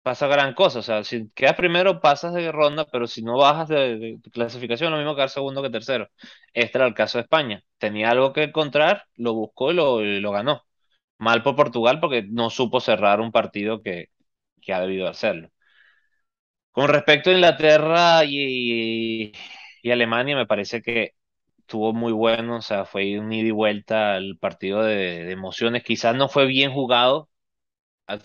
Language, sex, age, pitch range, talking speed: Spanish, male, 20-39, 105-135 Hz, 185 wpm